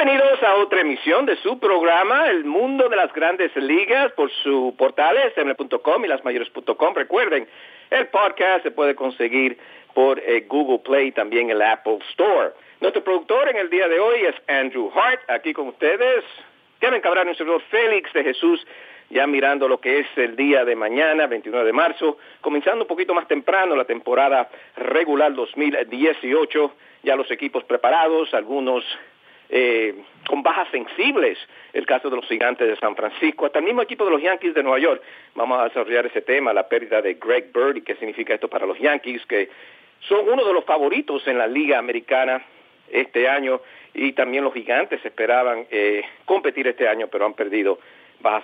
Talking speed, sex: 175 wpm, male